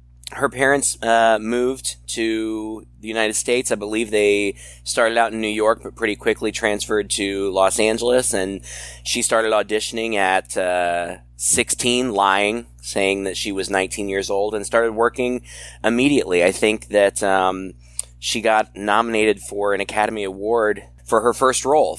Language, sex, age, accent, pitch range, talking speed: English, male, 20-39, American, 95-115 Hz, 155 wpm